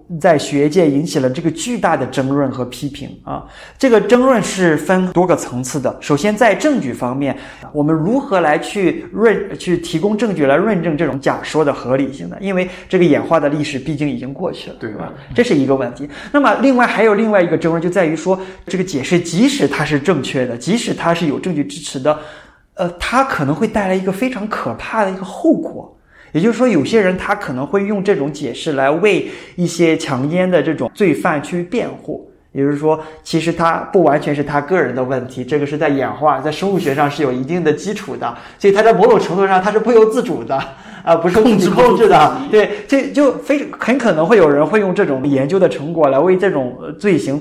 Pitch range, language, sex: 145-205 Hz, Chinese, male